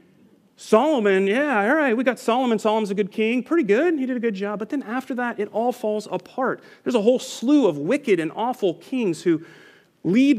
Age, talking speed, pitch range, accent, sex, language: 40-59, 215 wpm, 160-220 Hz, American, male, English